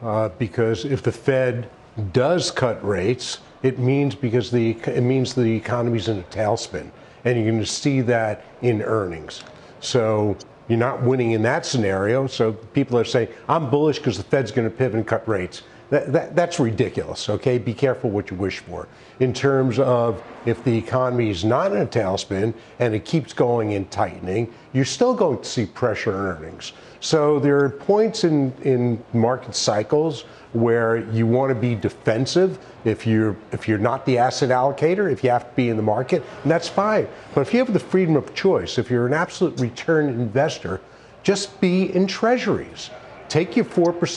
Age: 50-69